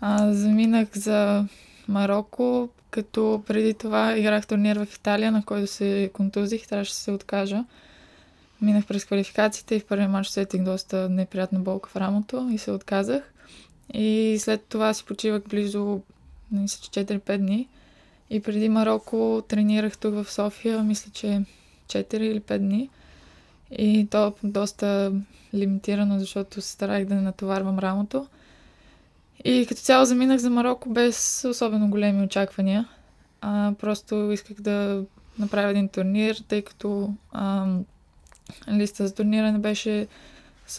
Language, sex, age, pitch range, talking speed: Bulgarian, female, 20-39, 195-220 Hz, 140 wpm